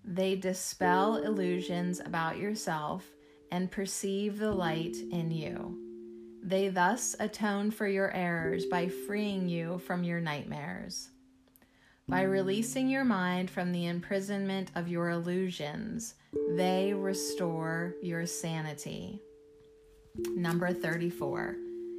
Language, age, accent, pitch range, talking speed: English, 30-49, American, 130-190 Hz, 105 wpm